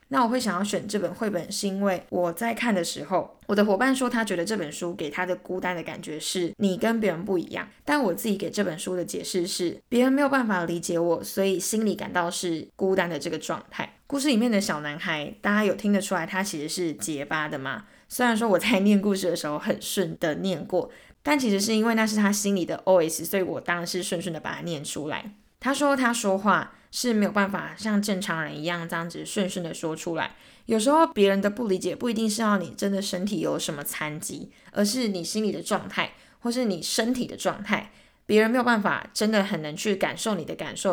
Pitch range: 175-215 Hz